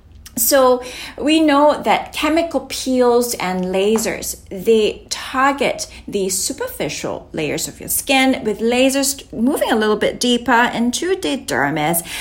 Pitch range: 190-270 Hz